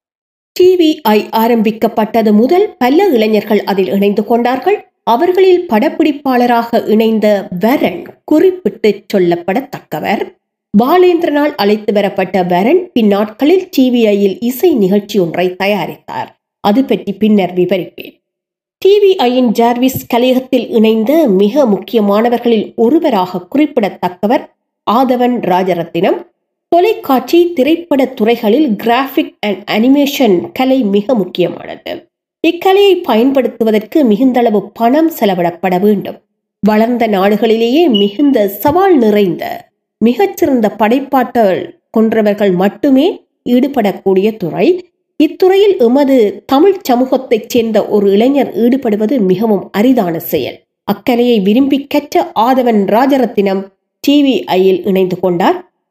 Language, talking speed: Tamil, 90 wpm